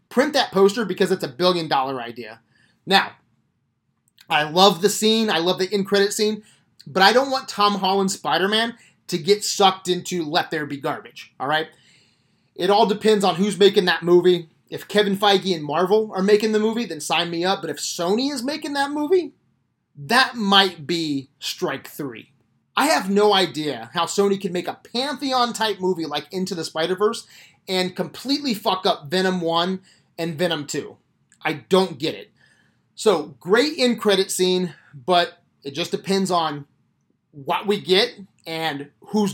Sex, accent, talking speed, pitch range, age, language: male, American, 170 wpm, 165-210 Hz, 30-49, English